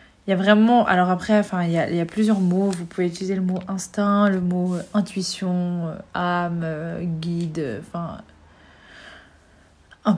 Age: 30-49